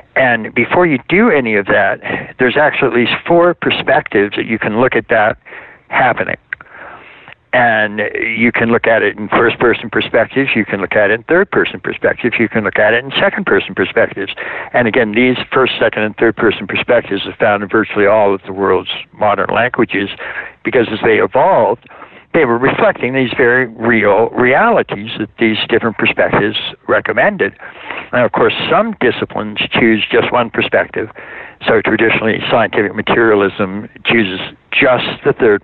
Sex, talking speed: male, 160 wpm